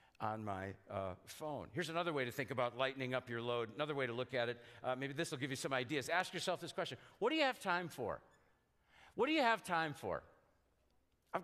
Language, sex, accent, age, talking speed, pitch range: English, male, American, 50-69, 235 wpm, 100-125 Hz